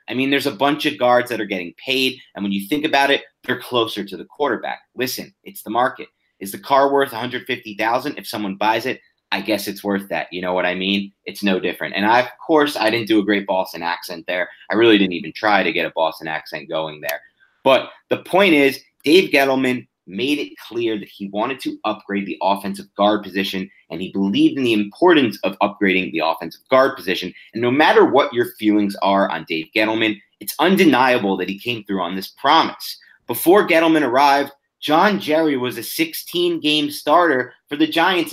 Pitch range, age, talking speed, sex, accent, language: 100-140 Hz, 30-49, 210 wpm, male, American, English